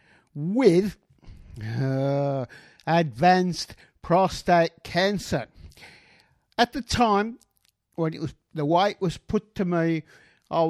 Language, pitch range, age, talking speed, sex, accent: English, 130-175 Hz, 50-69, 100 wpm, male, British